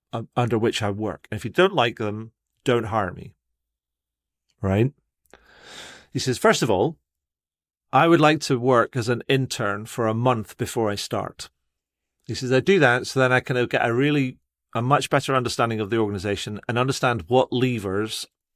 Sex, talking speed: male, 180 wpm